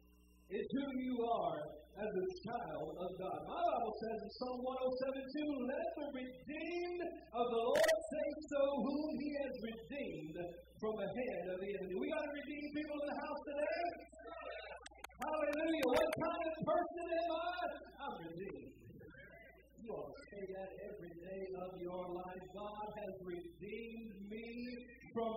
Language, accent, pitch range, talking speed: English, American, 215-285 Hz, 160 wpm